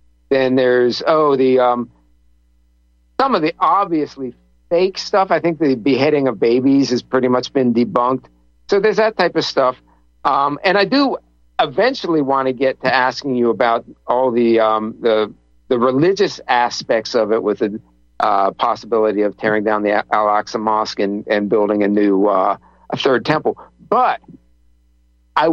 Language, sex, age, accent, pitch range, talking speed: English, male, 50-69, American, 105-150 Hz, 165 wpm